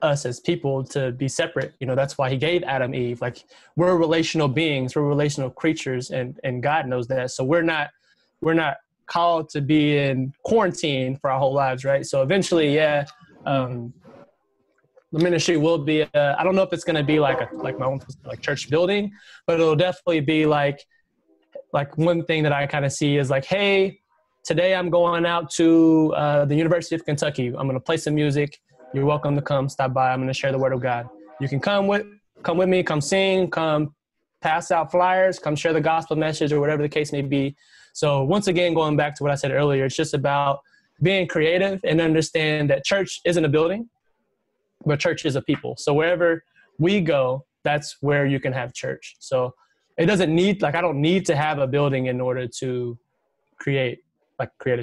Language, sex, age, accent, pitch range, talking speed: English, male, 20-39, American, 135-170 Hz, 210 wpm